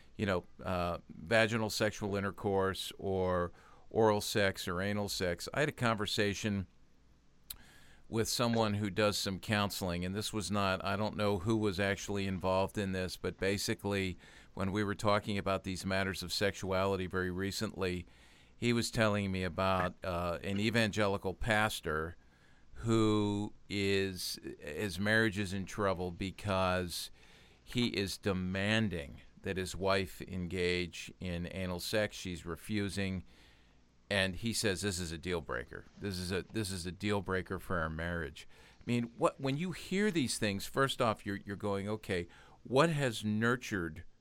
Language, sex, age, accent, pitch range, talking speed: English, male, 50-69, American, 90-110 Hz, 155 wpm